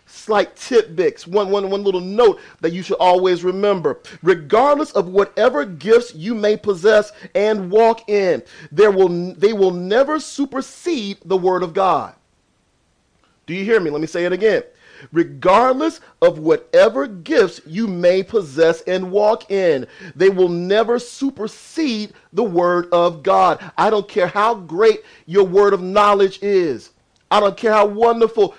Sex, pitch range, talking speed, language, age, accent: male, 190-240 Hz, 155 wpm, English, 40-59, American